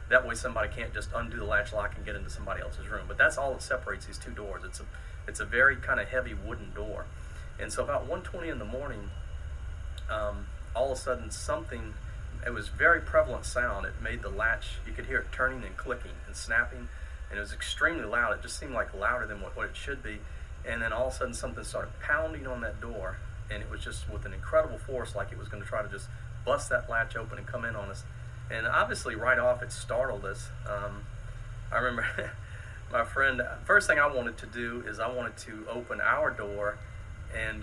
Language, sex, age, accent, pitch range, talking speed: English, male, 40-59, American, 90-115 Hz, 225 wpm